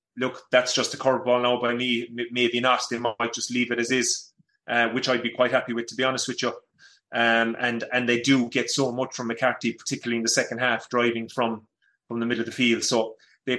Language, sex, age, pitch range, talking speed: English, male, 30-49, 115-135 Hz, 240 wpm